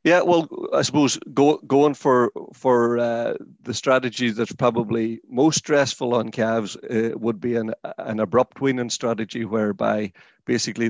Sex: male